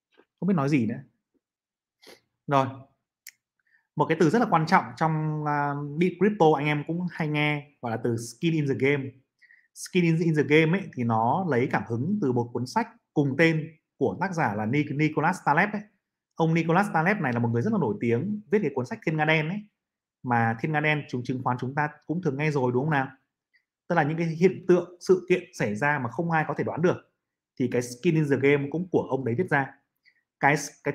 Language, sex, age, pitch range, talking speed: Vietnamese, male, 30-49, 135-180 Hz, 235 wpm